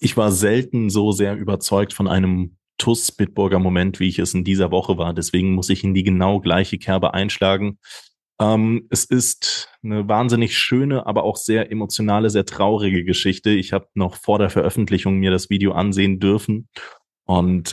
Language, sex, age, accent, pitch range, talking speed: German, male, 20-39, German, 90-105 Hz, 175 wpm